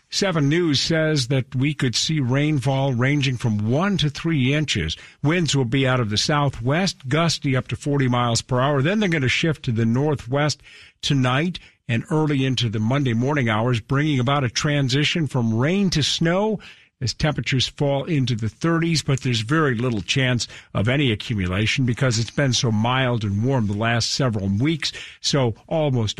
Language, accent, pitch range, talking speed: English, American, 120-150 Hz, 180 wpm